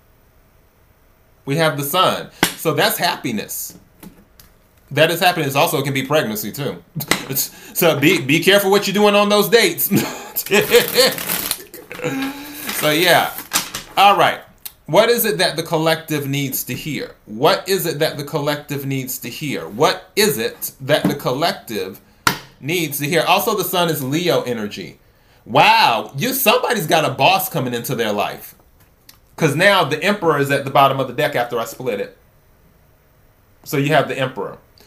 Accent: American